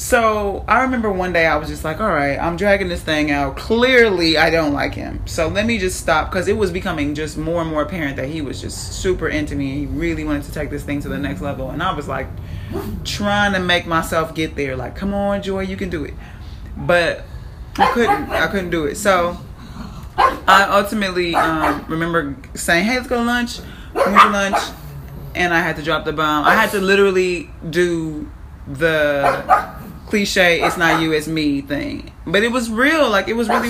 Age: 20-39